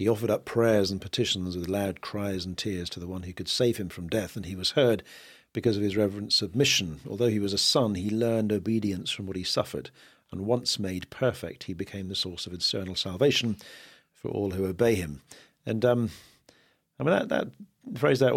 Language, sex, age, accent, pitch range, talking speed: English, male, 50-69, British, 95-115 Hz, 210 wpm